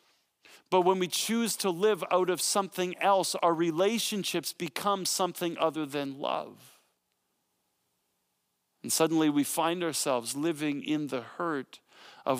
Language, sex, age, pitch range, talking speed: English, male, 40-59, 140-185 Hz, 130 wpm